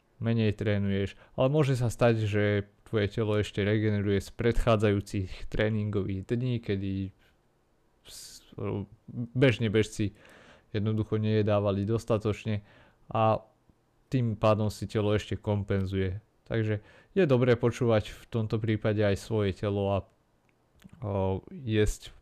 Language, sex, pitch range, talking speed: Slovak, male, 95-110 Hz, 110 wpm